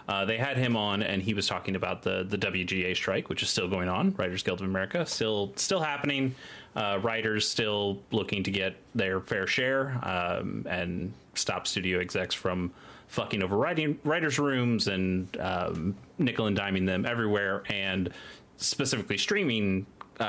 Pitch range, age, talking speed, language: 95-115 Hz, 30-49, 165 wpm, English